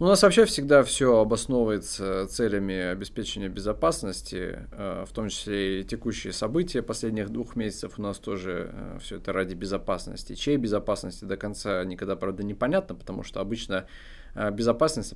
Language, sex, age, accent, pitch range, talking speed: Russian, male, 20-39, native, 95-115 Hz, 145 wpm